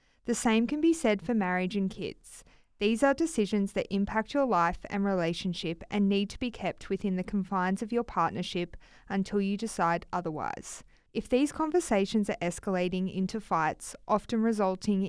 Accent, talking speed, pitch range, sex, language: Australian, 165 wpm, 185-220 Hz, female, English